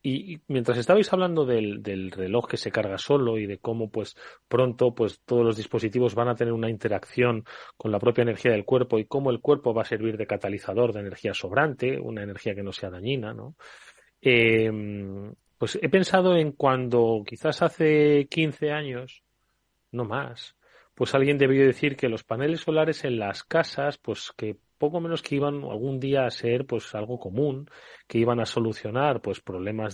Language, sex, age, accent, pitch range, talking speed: Spanish, male, 30-49, Spanish, 115-150 Hz, 185 wpm